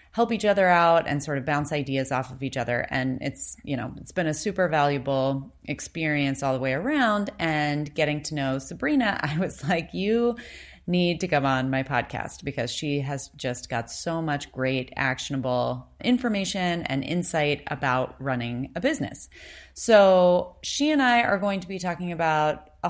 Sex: female